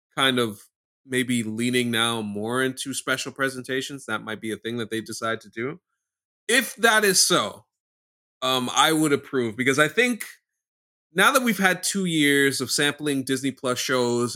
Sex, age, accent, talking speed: male, 30-49, American, 170 wpm